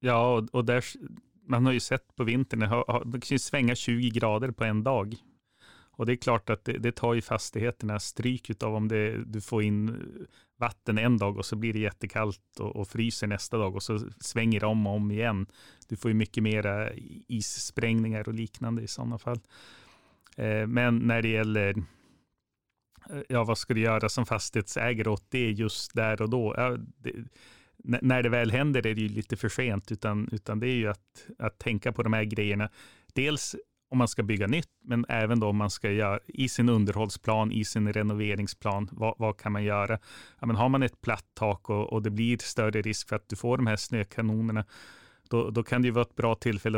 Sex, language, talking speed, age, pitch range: male, Swedish, 205 wpm, 30-49, 105-120 Hz